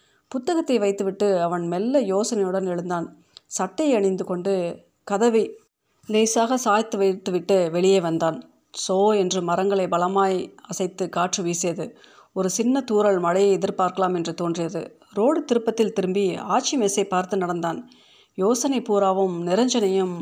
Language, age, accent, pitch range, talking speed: Tamil, 30-49, native, 180-220 Hz, 115 wpm